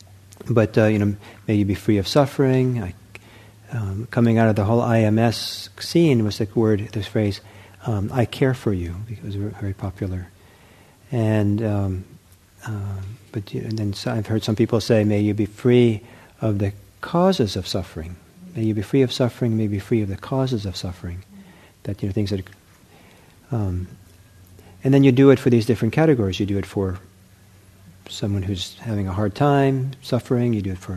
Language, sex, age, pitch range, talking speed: English, male, 50-69, 95-115 Hz, 190 wpm